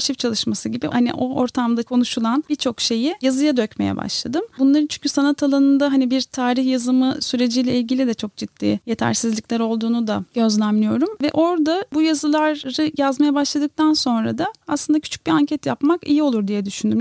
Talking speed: 160 wpm